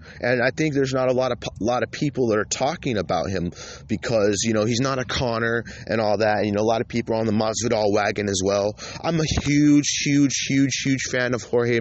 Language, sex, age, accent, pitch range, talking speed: English, male, 30-49, American, 95-120 Hz, 250 wpm